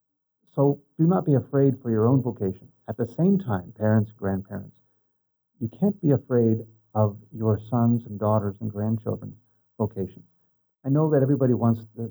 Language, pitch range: English, 105-125 Hz